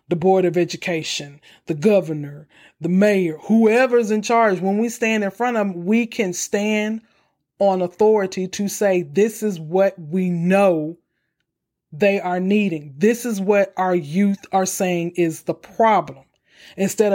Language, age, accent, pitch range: English, 40-59, American, 175-215 Hz